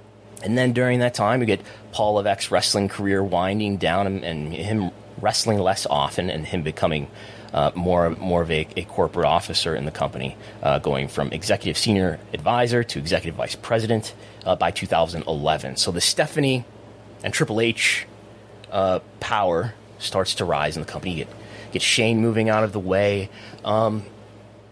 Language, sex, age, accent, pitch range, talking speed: English, male, 30-49, American, 85-110 Hz, 170 wpm